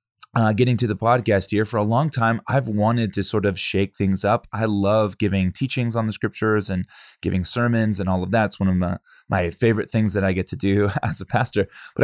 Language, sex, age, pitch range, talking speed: English, male, 20-39, 95-115 Hz, 240 wpm